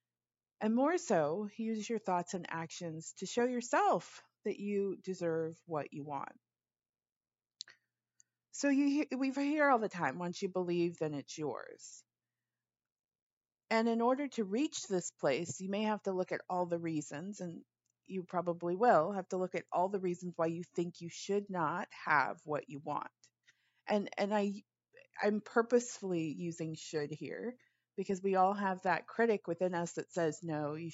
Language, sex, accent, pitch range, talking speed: English, female, American, 165-210 Hz, 170 wpm